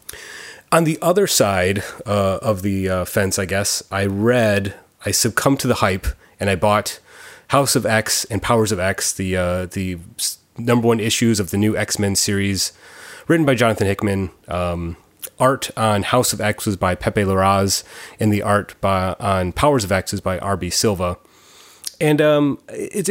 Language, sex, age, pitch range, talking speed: English, male, 30-49, 100-125 Hz, 175 wpm